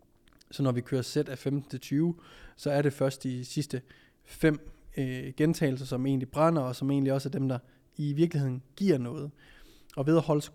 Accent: native